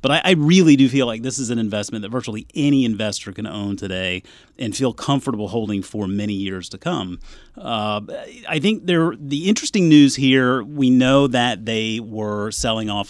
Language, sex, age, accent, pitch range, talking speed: English, male, 30-49, American, 105-135 Hz, 190 wpm